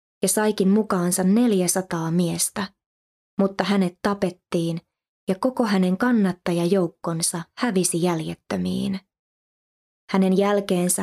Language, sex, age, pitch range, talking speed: Finnish, female, 20-39, 175-200 Hz, 90 wpm